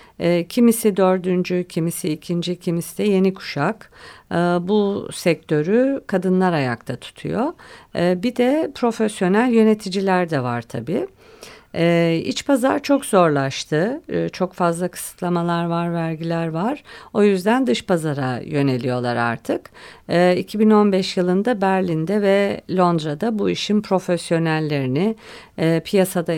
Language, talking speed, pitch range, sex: Turkish, 110 wpm, 155-200 Hz, female